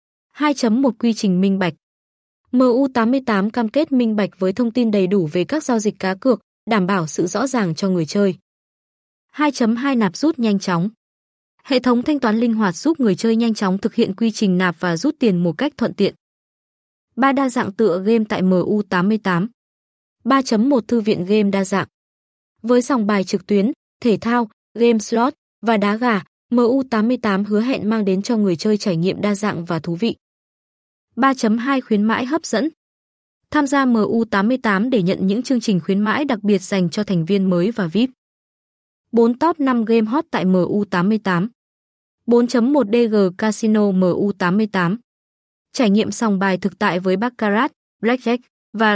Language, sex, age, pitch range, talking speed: Vietnamese, female, 20-39, 195-240 Hz, 180 wpm